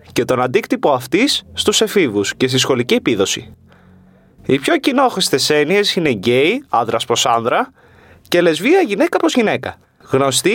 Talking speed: 140 wpm